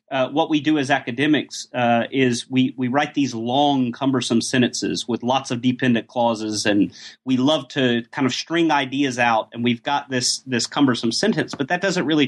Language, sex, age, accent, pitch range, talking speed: English, male, 30-49, American, 120-145 Hz, 195 wpm